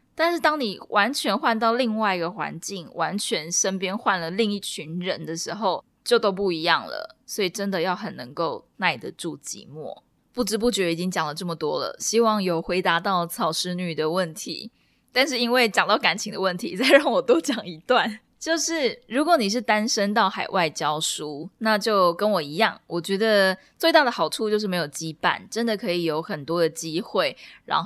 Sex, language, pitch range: female, Chinese, 170-225 Hz